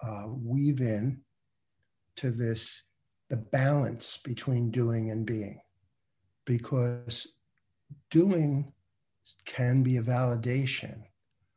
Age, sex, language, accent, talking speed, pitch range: 60-79, male, English, American, 90 wpm, 115-145 Hz